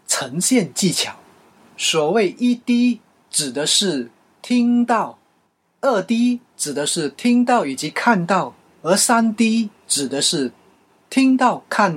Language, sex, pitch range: Chinese, male, 165-245 Hz